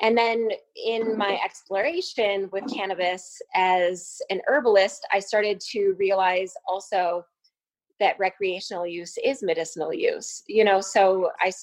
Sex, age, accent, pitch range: female, 20-39, American, 175-210 Hz